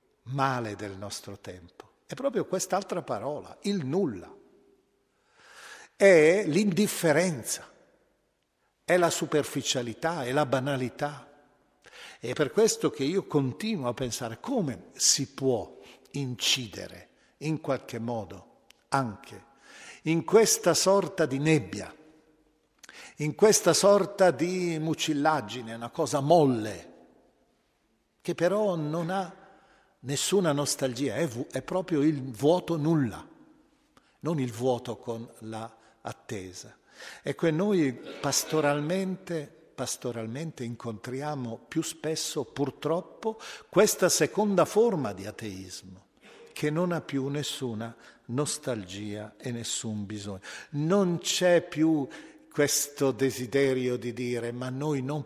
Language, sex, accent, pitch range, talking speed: Italian, male, native, 120-170 Hz, 105 wpm